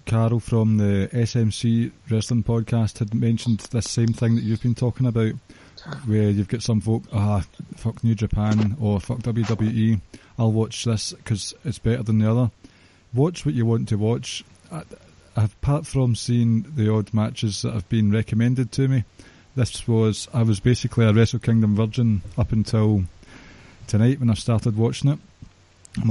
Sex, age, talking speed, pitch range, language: male, 20-39, 170 wpm, 105-120 Hz, English